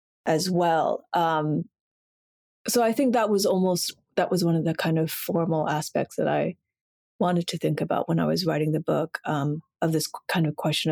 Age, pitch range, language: 30-49, 155-205 Hz, English